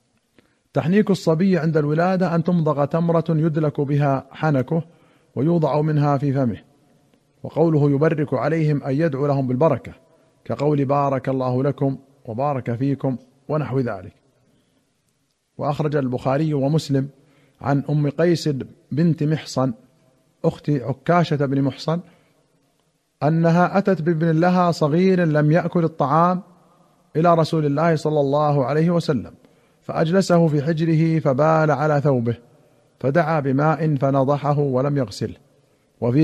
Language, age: Arabic, 40-59